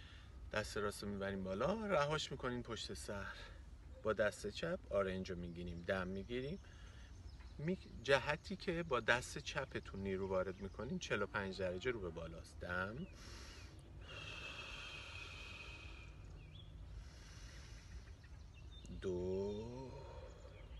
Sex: male